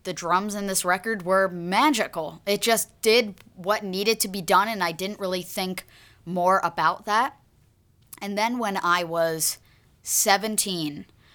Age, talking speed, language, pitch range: 20-39, 155 wpm, English, 160-195 Hz